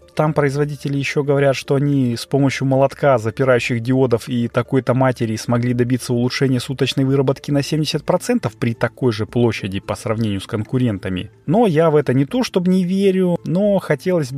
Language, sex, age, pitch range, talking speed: Russian, male, 30-49, 110-145 Hz, 165 wpm